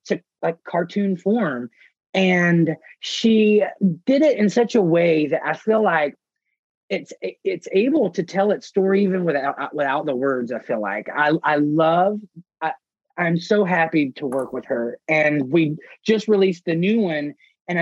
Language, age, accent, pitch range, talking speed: English, 30-49, American, 150-190 Hz, 170 wpm